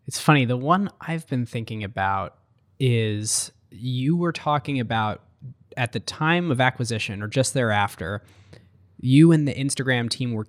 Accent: American